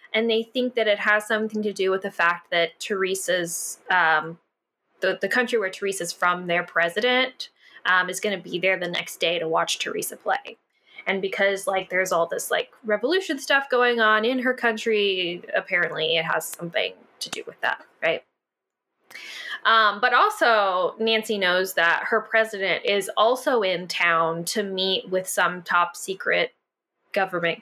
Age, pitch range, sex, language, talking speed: 10-29, 180-230 Hz, female, English, 170 wpm